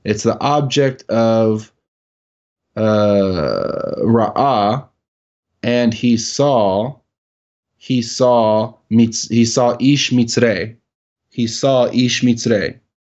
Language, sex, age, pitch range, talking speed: English, male, 20-39, 105-120 Hz, 85 wpm